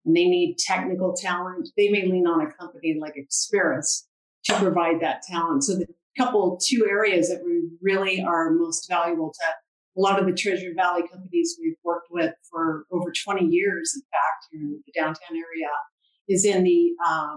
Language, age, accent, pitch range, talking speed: English, 50-69, American, 165-215 Hz, 185 wpm